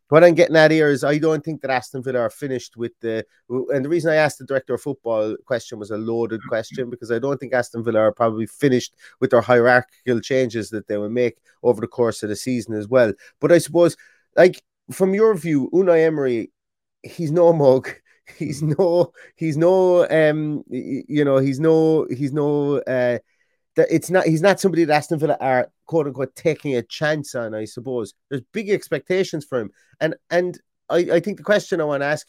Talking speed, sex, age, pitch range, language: 210 wpm, male, 30-49, 120-160 Hz, English